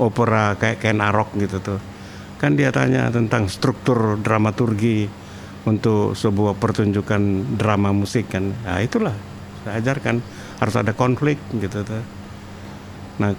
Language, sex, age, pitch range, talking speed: Indonesian, male, 60-79, 100-125 Hz, 130 wpm